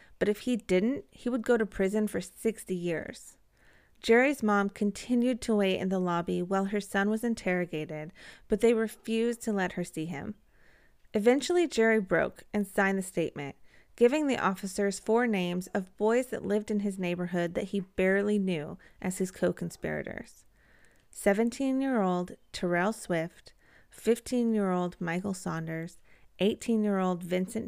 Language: English